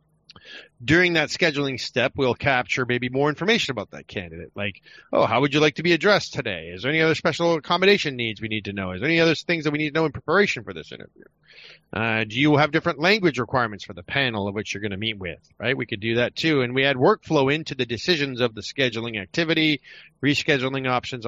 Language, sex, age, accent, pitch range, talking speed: English, male, 30-49, American, 115-160 Hz, 235 wpm